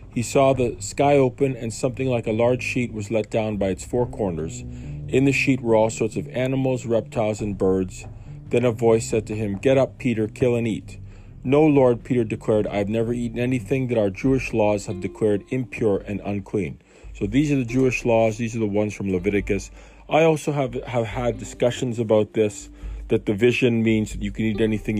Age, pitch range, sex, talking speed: 40-59, 100-125 Hz, male, 210 wpm